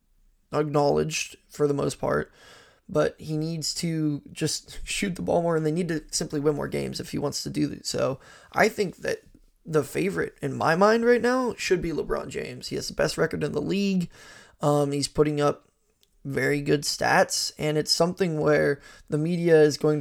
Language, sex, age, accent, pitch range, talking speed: English, male, 20-39, American, 145-165 Hz, 200 wpm